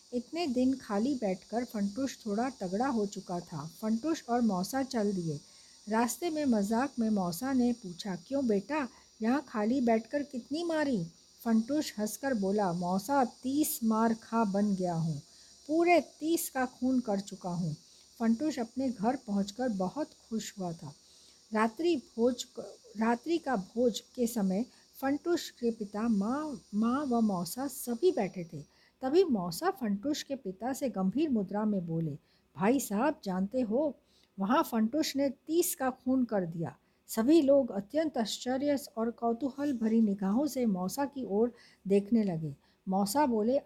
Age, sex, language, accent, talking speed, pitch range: 50-69, female, Hindi, native, 150 wpm, 200-275 Hz